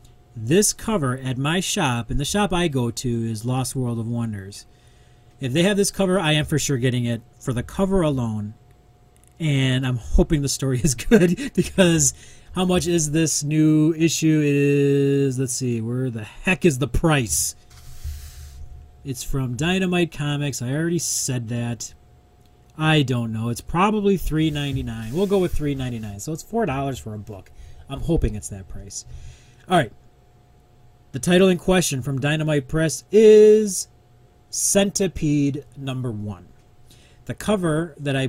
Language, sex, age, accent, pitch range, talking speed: English, male, 30-49, American, 120-165 Hz, 160 wpm